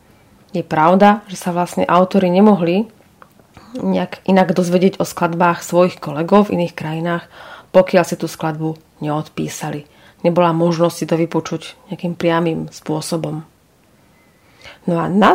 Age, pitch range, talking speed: 30-49, 170-220 Hz, 130 wpm